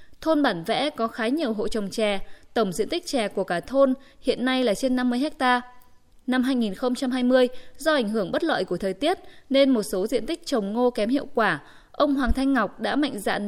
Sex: female